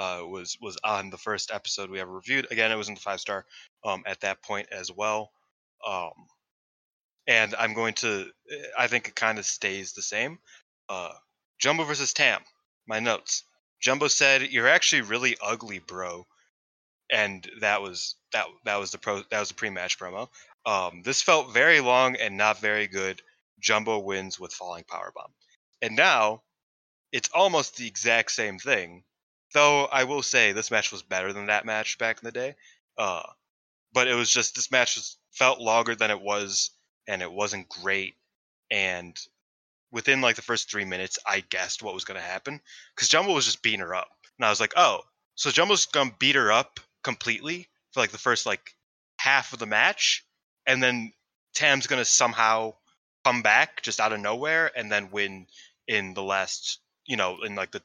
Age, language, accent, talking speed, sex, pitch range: 20-39, English, American, 190 wpm, male, 95-120 Hz